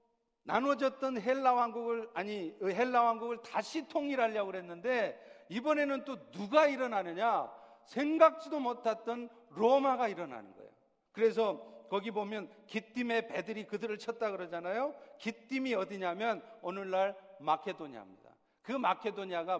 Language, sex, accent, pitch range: Korean, male, native, 190-255 Hz